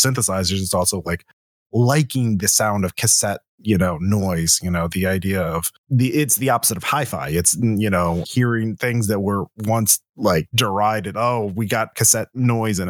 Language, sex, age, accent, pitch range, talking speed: English, male, 30-49, American, 95-115 Hz, 180 wpm